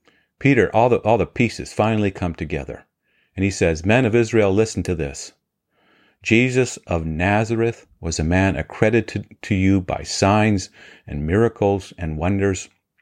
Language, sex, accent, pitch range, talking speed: English, male, American, 85-110 Hz, 150 wpm